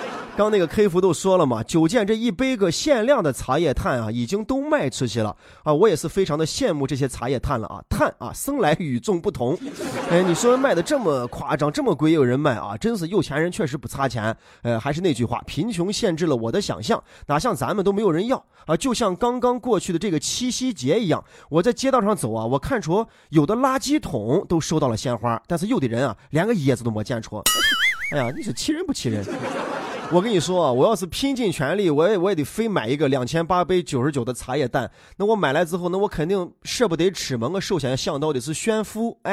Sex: male